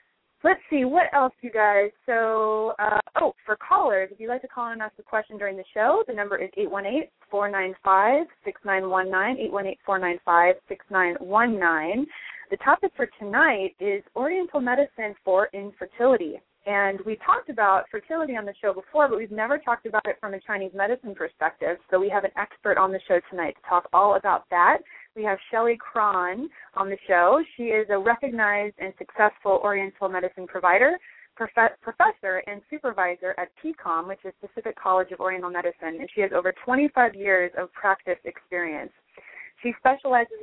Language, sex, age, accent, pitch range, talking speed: English, female, 30-49, American, 190-250 Hz, 165 wpm